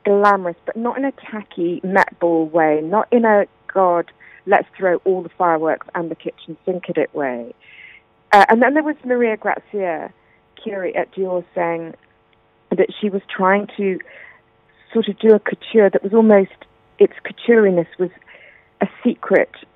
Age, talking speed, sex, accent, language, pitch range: 40-59, 165 wpm, female, British, English, 165-215 Hz